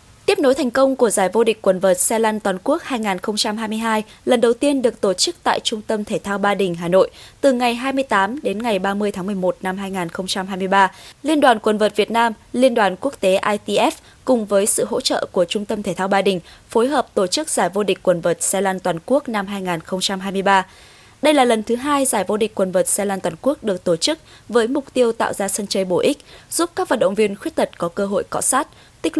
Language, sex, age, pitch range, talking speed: Vietnamese, female, 20-39, 195-255 Hz, 240 wpm